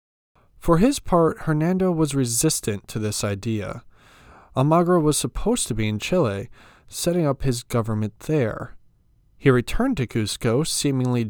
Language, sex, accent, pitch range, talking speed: English, male, American, 115-160 Hz, 140 wpm